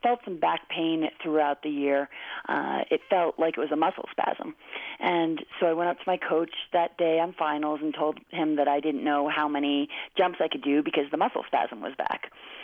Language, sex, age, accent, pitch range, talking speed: English, female, 30-49, American, 145-170 Hz, 225 wpm